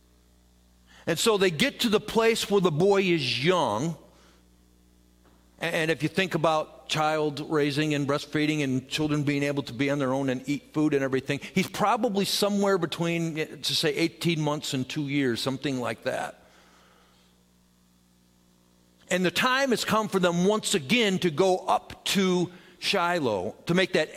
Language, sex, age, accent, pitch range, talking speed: English, male, 50-69, American, 130-200 Hz, 165 wpm